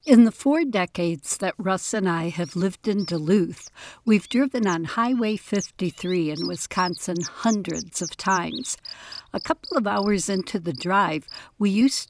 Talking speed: 155 wpm